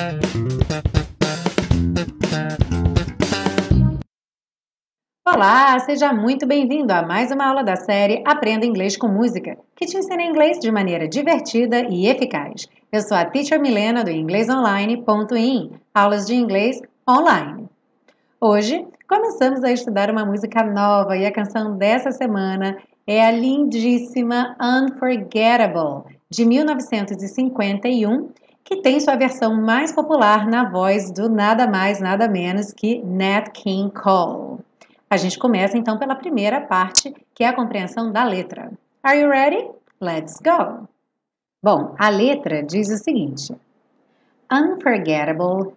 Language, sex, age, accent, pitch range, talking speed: Portuguese, female, 30-49, Brazilian, 200-265 Hz, 125 wpm